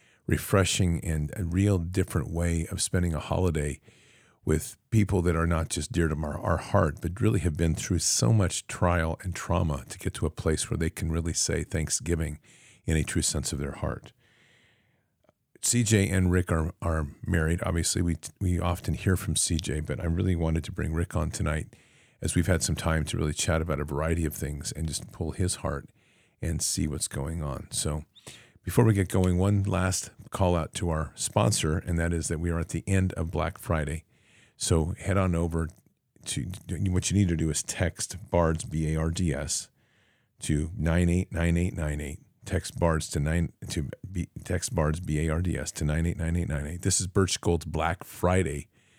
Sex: male